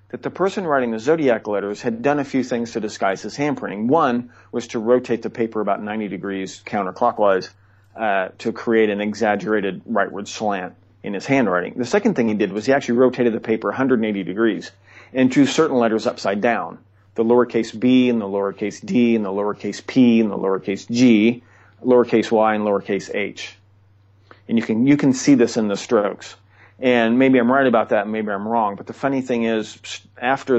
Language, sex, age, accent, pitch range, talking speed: English, male, 40-59, American, 100-125 Hz, 200 wpm